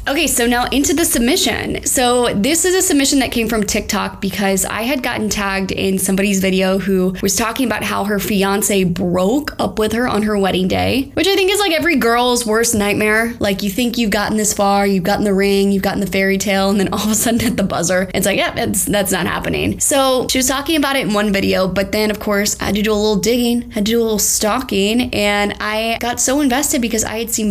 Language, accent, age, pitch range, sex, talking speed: English, American, 20-39, 195-235 Hz, female, 245 wpm